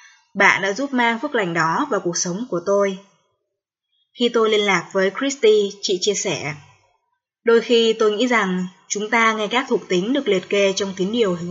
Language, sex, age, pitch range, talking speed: Vietnamese, female, 20-39, 190-235 Hz, 205 wpm